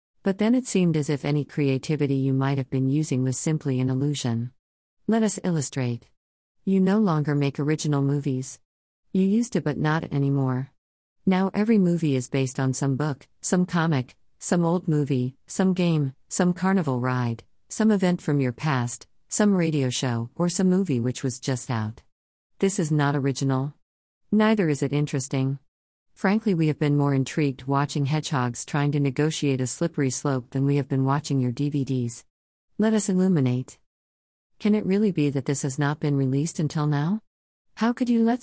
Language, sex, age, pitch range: English, female, 50-69, 130-175 Hz